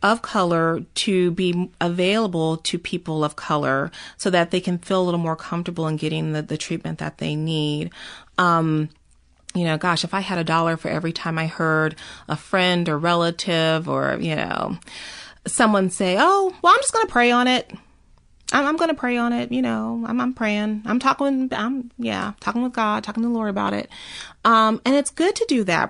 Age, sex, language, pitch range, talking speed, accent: 30-49, female, English, 175-230 Hz, 205 wpm, American